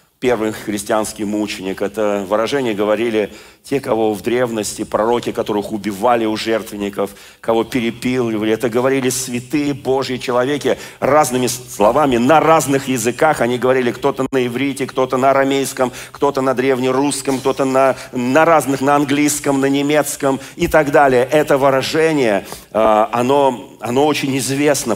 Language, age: Russian, 40-59